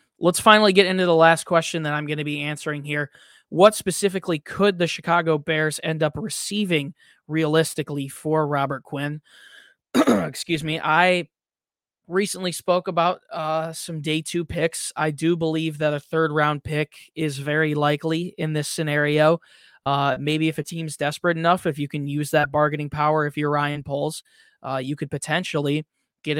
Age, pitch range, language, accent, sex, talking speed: 20-39, 145-165 Hz, English, American, male, 170 wpm